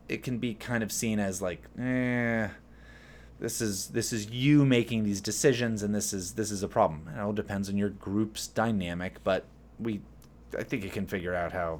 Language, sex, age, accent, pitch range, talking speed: English, male, 30-49, American, 95-125 Hz, 205 wpm